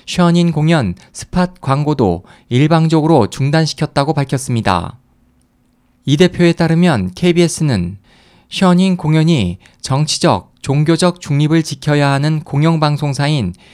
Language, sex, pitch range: Korean, male, 130-170 Hz